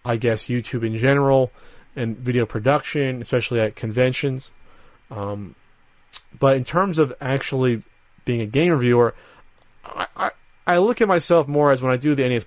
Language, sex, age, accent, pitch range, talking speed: English, male, 30-49, American, 110-150 Hz, 165 wpm